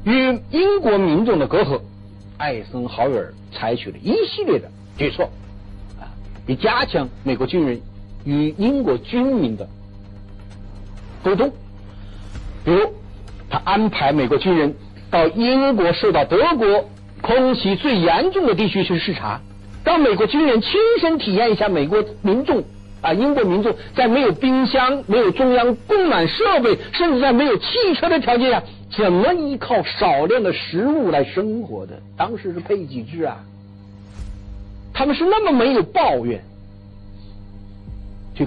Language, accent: Chinese, native